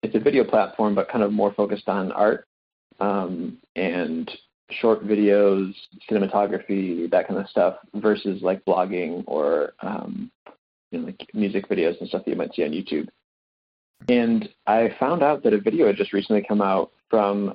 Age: 20-39